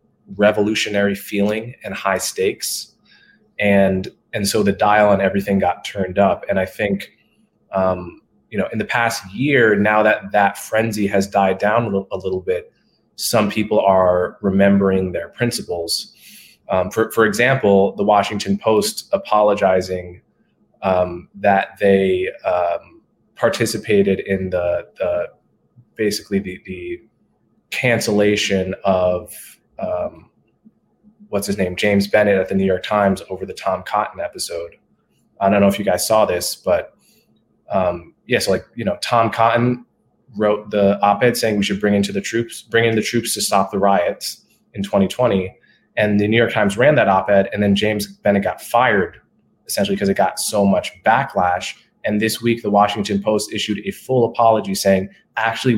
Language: English